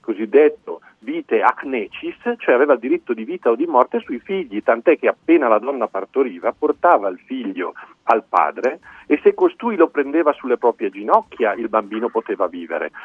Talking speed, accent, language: 170 wpm, native, Italian